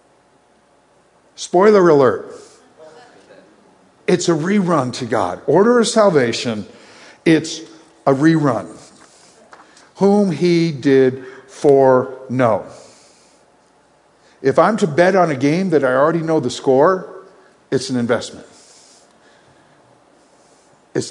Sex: male